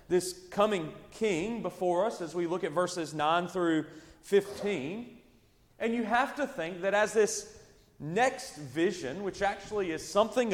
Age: 30-49